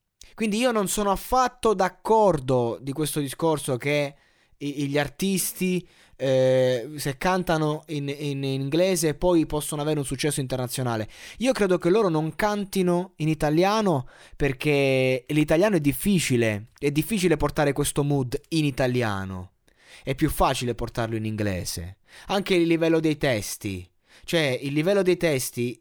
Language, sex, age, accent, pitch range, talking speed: Italian, male, 20-39, native, 125-175 Hz, 140 wpm